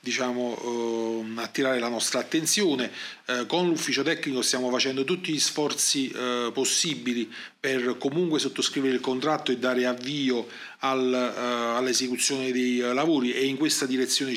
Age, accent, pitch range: 40-59, native, 125-140 Hz